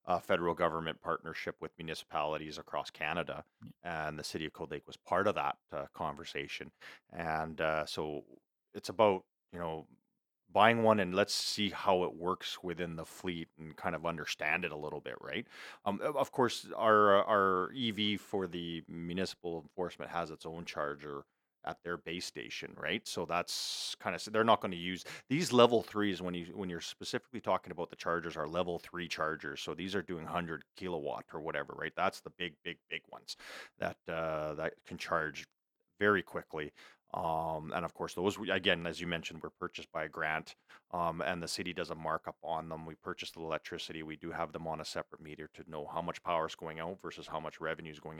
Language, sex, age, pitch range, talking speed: English, male, 40-59, 80-95 Hz, 205 wpm